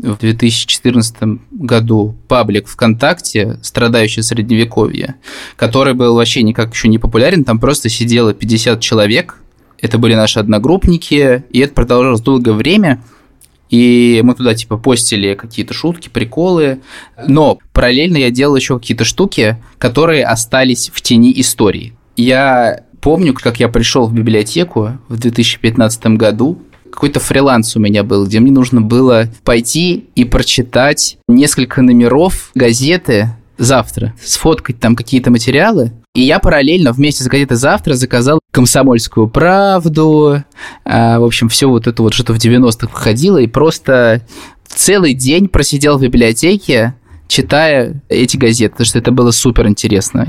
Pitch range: 115-135 Hz